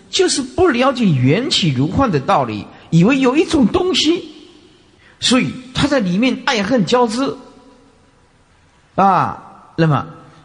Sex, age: male, 50-69